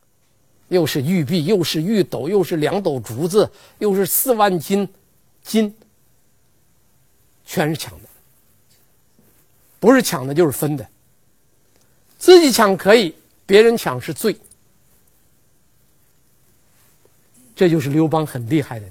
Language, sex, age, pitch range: Chinese, male, 50-69, 125-205 Hz